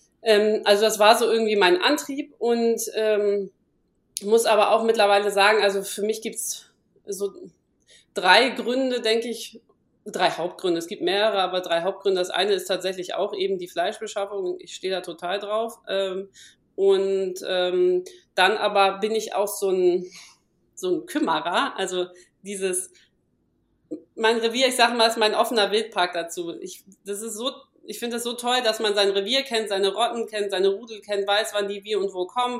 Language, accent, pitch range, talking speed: German, German, 200-230 Hz, 175 wpm